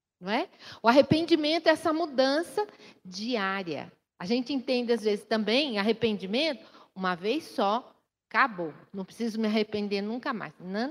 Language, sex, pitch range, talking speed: Portuguese, female, 205-280 Hz, 140 wpm